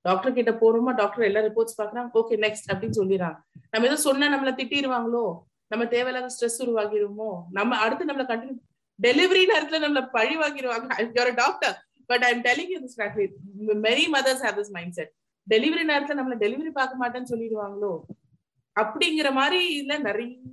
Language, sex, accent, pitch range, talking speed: Tamil, female, native, 205-275 Hz, 65 wpm